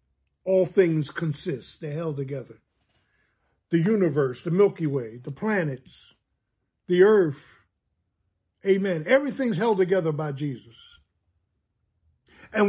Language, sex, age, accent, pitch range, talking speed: English, male, 50-69, American, 130-185 Hz, 105 wpm